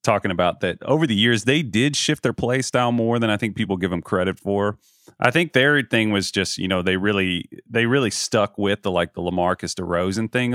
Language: English